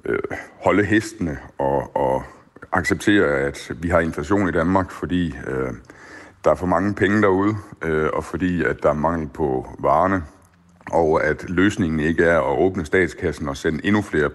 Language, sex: Danish, male